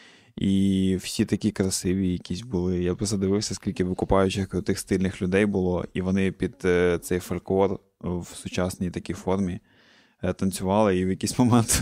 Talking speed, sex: 145 wpm, male